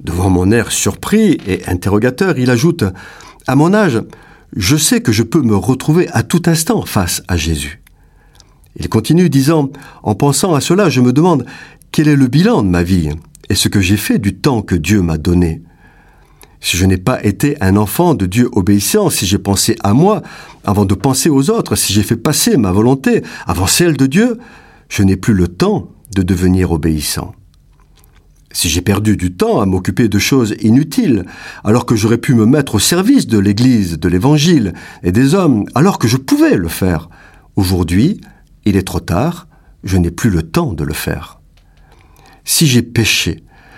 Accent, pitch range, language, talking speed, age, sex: French, 95-150 Hz, French, 190 wpm, 50-69, male